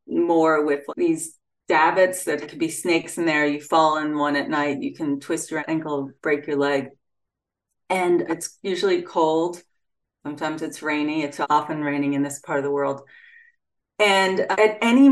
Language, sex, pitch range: English, female, 150-195 Hz